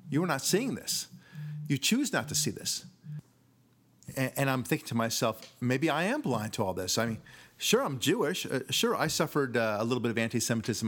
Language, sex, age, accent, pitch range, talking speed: English, male, 40-59, American, 110-140 Hz, 215 wpm